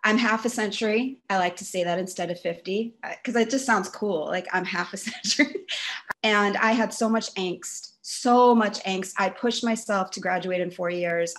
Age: 30-49